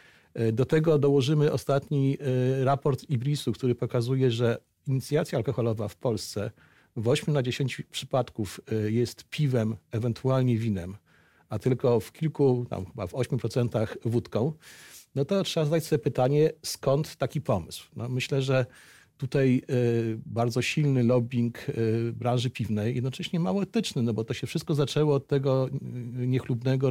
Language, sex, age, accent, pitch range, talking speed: Polish, male, 50-69, native, 115-145 Hz, 135 wpm